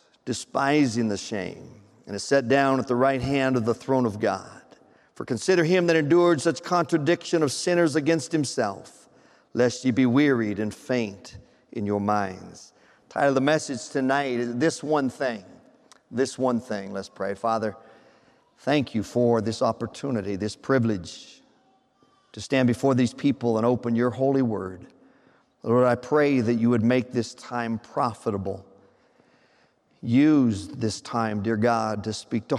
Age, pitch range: 50-69, 115-150 Hz